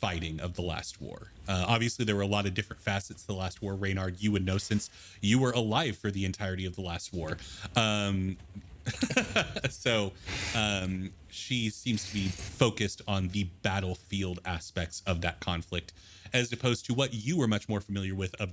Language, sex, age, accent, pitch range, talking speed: English, male, 30-49, American, 90-105 Hz, 190 wpm